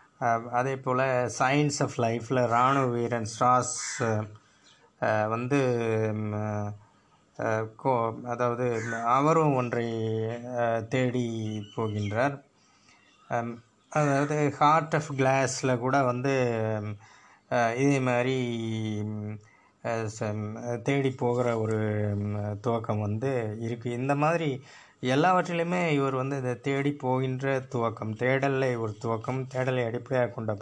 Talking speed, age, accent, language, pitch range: 85 wpm, 20-39, native, Tamil, 115-145 Hz